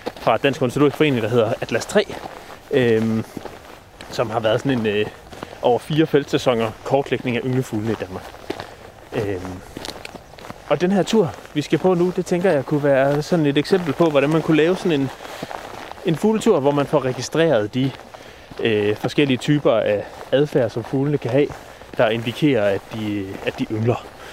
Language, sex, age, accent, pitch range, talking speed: Danish, male, 30-49, native, 110-150 Hz, 175 wpm